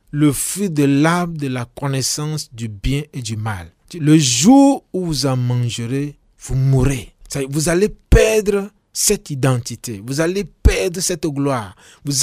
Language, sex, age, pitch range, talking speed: French, male, 40-59, 135-180 Hz, 165 wpm